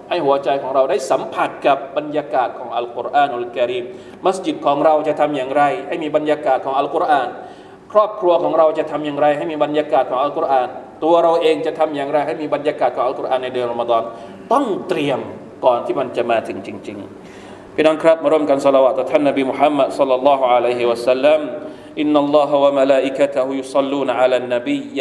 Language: Thai